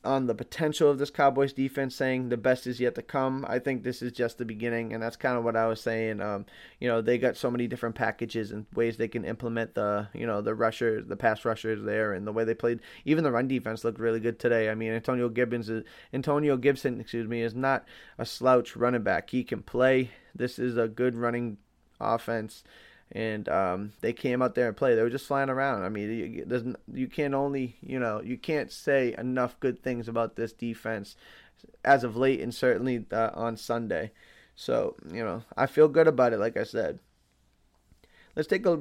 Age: 20-39